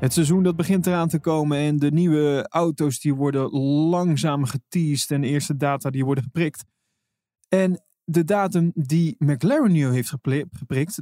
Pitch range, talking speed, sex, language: 130-175 Hz, 165 wpm, male, Dutch